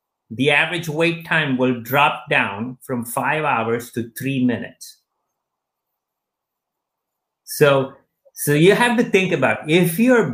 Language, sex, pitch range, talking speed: English, male, 115-145 Hz, 130 wpm